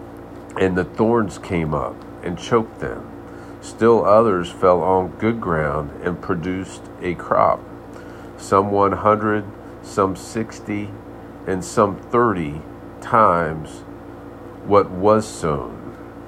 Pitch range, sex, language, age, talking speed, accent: 90-110 Hz, male, English, 50-69, 110 wpm, American